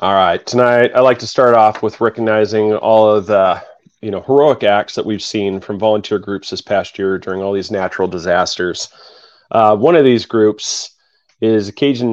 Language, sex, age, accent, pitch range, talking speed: English, male, 30-49, American, 100-115 Hz, 195 wpm